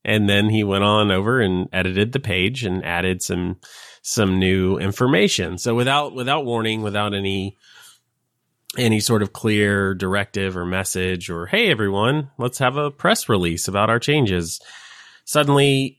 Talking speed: 155 wpm